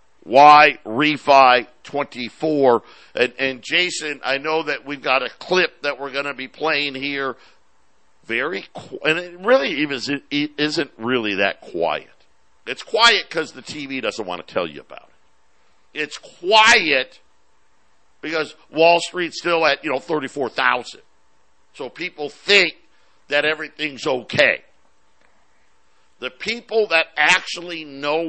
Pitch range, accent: 145-235 Hz, American